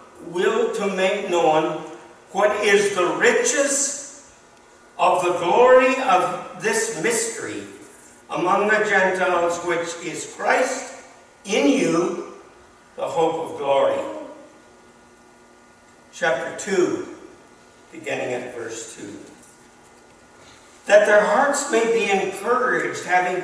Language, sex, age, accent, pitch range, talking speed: English, male, 60-79, American, 160-225 Hz, 100 wpm